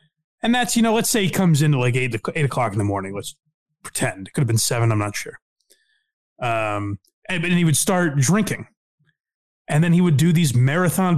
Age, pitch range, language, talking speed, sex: 30-49, 135-190 Hz, English, 220 wpm, male